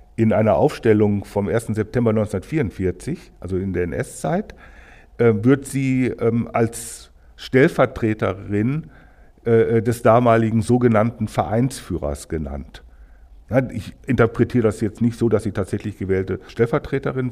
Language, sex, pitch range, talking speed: German, male, 95-120 Hz, 105 wpm